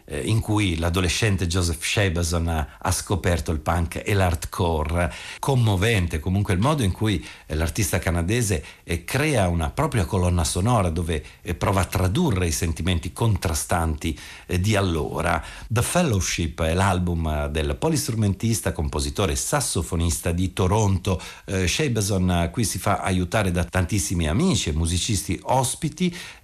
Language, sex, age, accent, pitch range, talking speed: Italian, male, 50-69, native, 80-100 Hz, 125 wpm